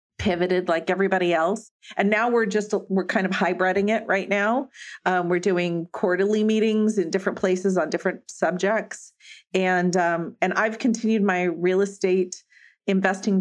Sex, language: female, English